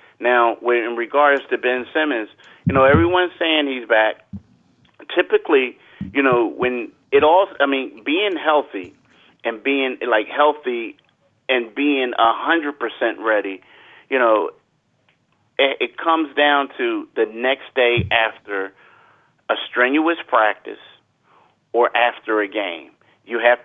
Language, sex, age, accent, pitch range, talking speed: English, male, 40-59, American, 115-150 Hz, 130 wpm